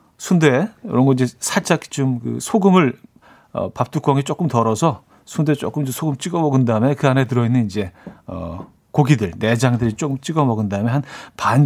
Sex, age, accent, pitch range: male, 40-59, native, 120-160 Hz